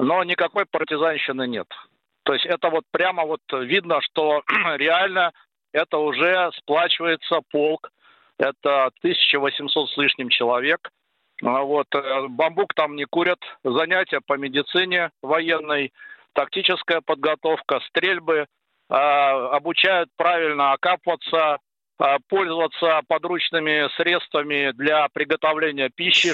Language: Russian